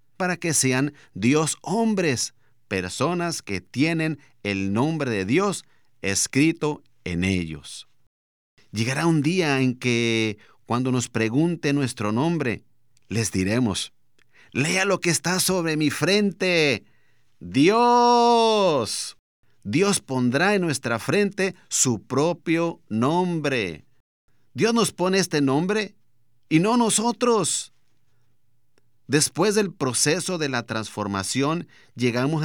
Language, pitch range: Spanish, 125-170 Hz